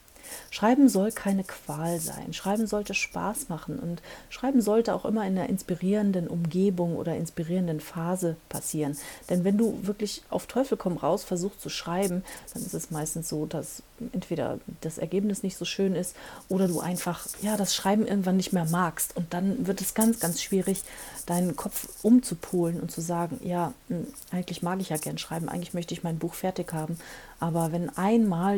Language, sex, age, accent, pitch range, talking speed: English, female, 40-59, German, 160-195 Hz, 180 wpm